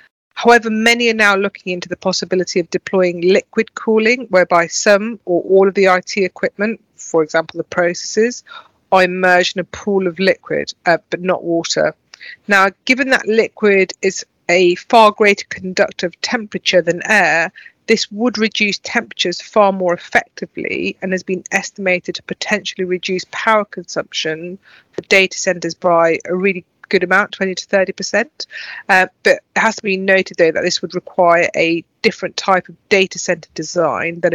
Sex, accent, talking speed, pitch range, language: female, British, 165 wpm, 180-205 Hz, English